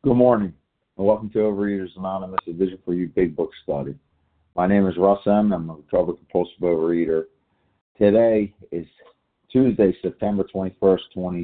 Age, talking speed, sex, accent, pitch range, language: 50-69, 155 wpm, male, American, 85-100 Hz, English